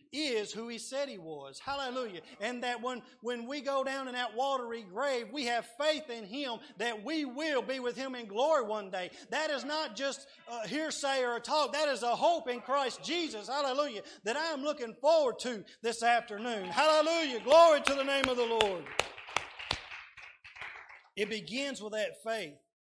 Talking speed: 185 wpm